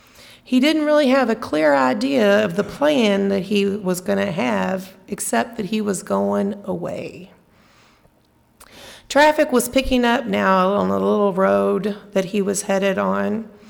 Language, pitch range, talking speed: English, 190-225 Hz, 160 wpm